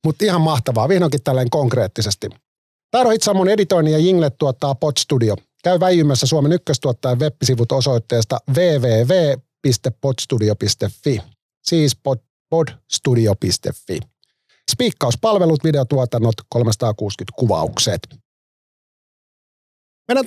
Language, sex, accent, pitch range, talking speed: Finnish, male, native, 120-160 Hz, 80 wpm